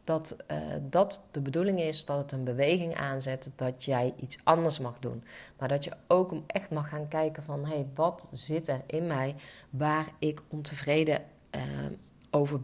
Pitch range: 145-170 Hz